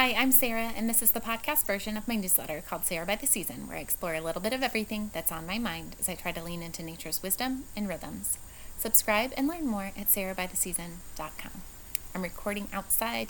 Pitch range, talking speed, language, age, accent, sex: 185-230 Hz, 215 wpm, English, 30-49, American, female